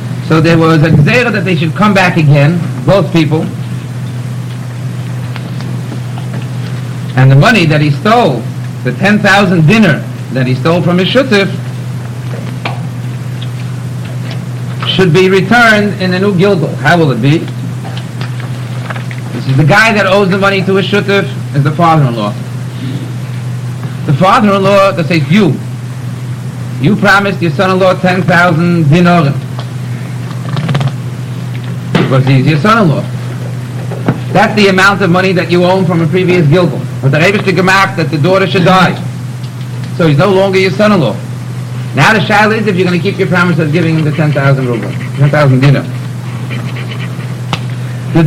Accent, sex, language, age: American, male, English, 50-69